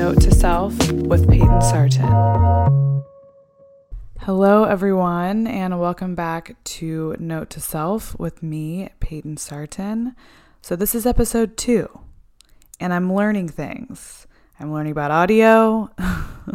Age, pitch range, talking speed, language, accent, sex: 20-39, 145-180 Hz, 115 wpm, English, American, female